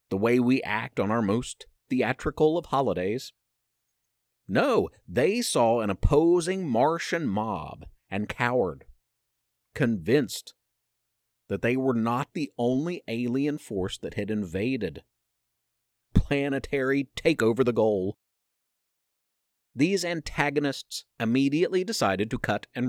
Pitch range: 115-150 Hz